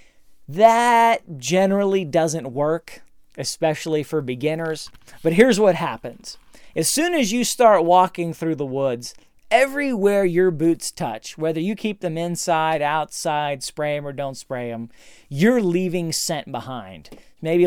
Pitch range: 135-185 Hz